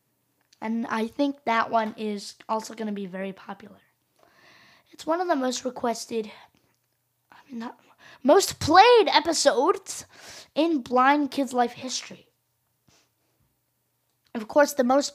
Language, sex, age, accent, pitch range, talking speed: English, female, 10-29, American, 215-280 Hz, 125 wpm